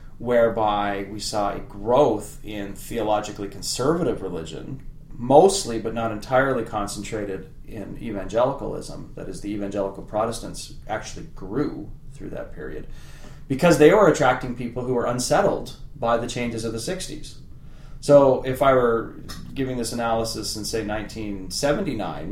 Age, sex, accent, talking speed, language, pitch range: 30-49, male, American, 135 wpm, English, 100-120 Hz